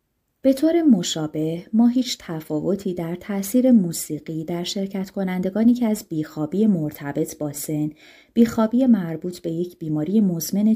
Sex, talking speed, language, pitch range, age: female, 135 wpm, Persian, 155-220 Hz, 30-49